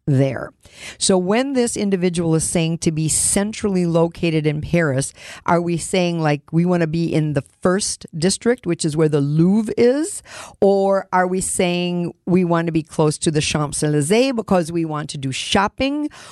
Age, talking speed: 50-69, 180 wpm